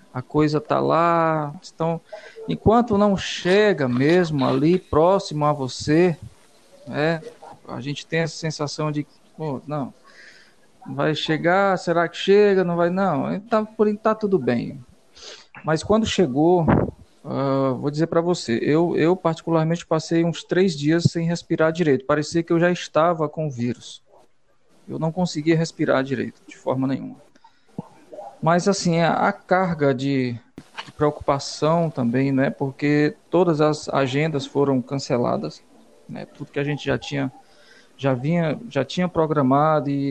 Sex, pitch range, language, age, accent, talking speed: male, 135-170 Hz, Portuguese, 40-59, Brazilian, 145 wpm